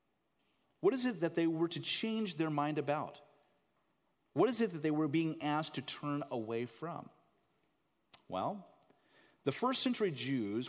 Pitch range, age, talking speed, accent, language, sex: 110-155 Hz, 40-59, 155 wpm, American, English, male